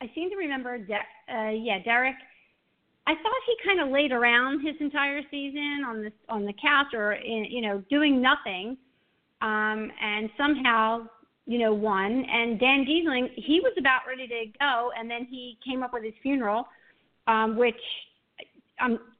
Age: 40-59